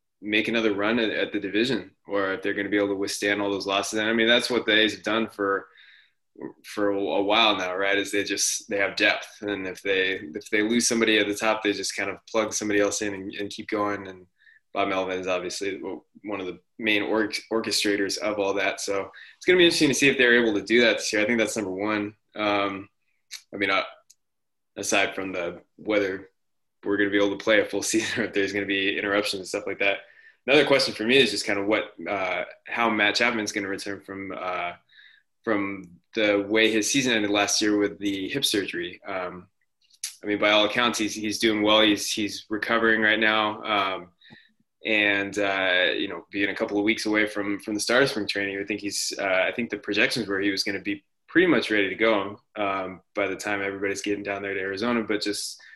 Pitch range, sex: 100-110 Hz, male